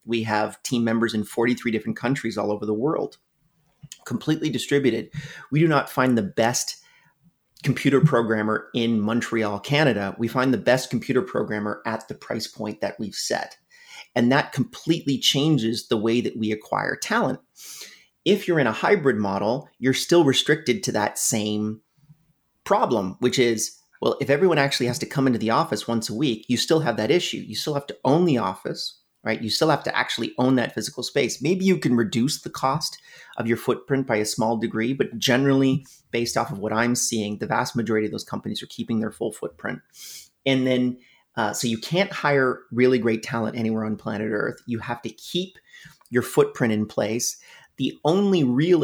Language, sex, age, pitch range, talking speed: English, male, 30-49, 110-140 Hz, 190 wpm